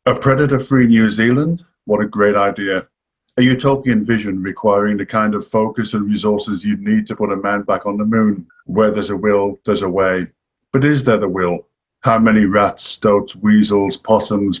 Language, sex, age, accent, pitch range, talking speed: English, male, 50-69, British, 100-115 Hz, 190 wpm